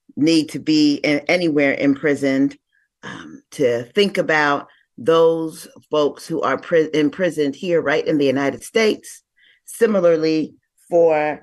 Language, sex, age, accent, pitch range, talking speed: English, female, 40-59, American, 145-190 Hz, 115 wpm